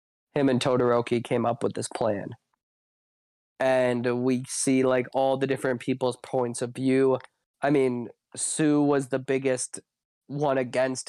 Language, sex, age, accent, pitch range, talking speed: English, male, 20-39, American, 120-135 Hz, 145 wpm